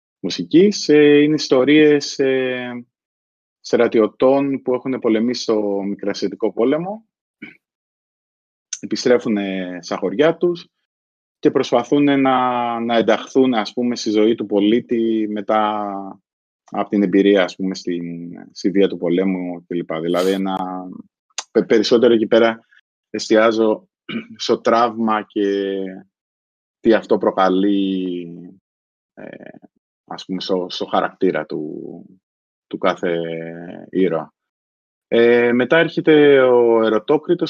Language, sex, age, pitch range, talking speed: Greek, male, 20-39, 95-125 Hz, 100 wpm